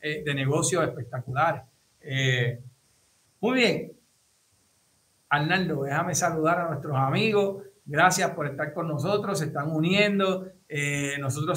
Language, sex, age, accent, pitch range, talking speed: Spanish, male, 60-79, American, 135-185 Hz, 110 wpm